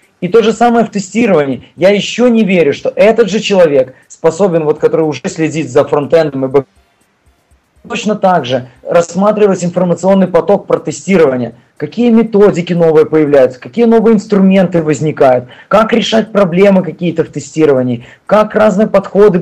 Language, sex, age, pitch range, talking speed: Russian, male, 20-39, 155-205 Hz, 150 wpm